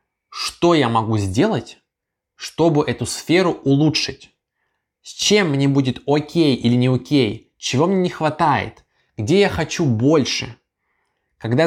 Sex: male